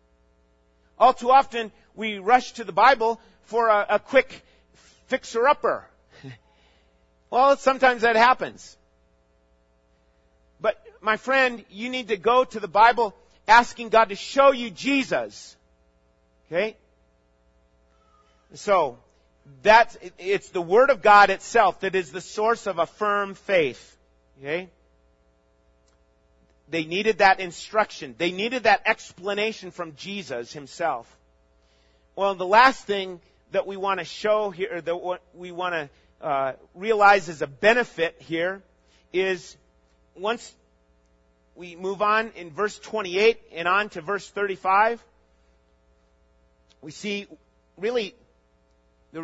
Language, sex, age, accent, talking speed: English, male, 40-59, American, 120 wpm